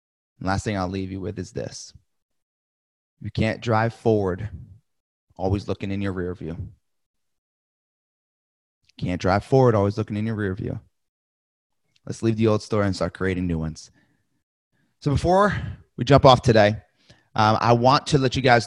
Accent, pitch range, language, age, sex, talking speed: American, 105-130 Hz, English, 30-49, male, 165 wpm